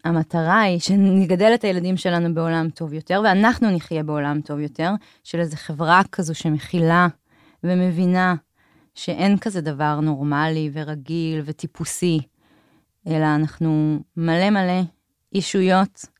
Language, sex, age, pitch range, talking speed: Hebrew, female, 20-39, 155-185 Hz, 115 wpm